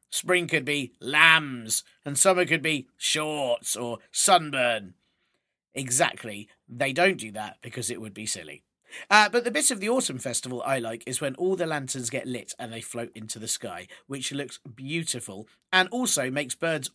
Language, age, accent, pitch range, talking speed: English, 40-59, British, 130-185 Hz, 180 wpm